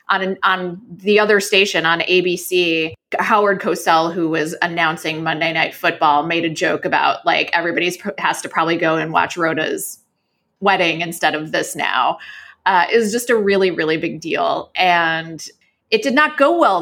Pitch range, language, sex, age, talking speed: 170-215 Hz, English, female, 20-39, 180 wpm